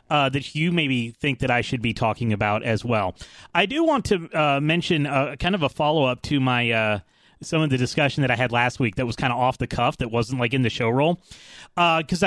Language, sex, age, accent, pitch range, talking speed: English, male, 30-49, American, 120-150 Hz, 265 wpm